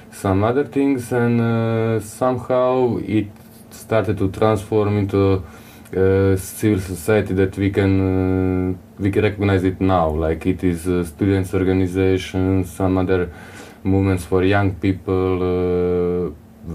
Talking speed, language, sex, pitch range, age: 130 wpm, Romanian, male, 90-105 Hz, 20-39